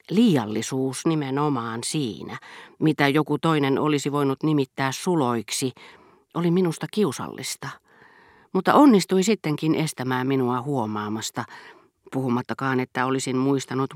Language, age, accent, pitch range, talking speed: Finnish, 40-59, native, 125-160 Hz, 100 wpm